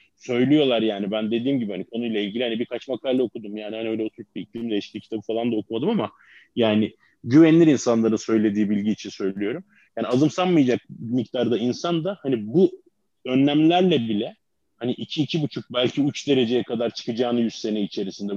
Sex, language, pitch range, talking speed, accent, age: male, Turkish, 110-145 Hz, 170 wpm, native, 30-49